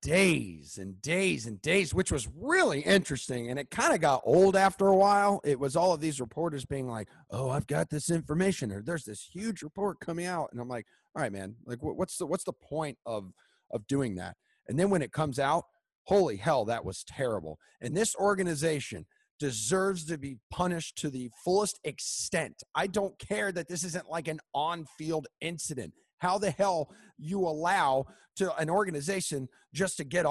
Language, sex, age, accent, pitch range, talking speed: English, male, 30-49, American, 140-195 Hz, 190 wpm